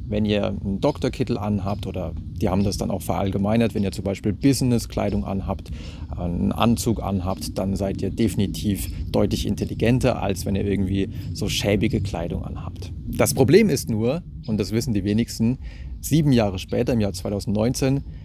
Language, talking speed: German, 165 wpm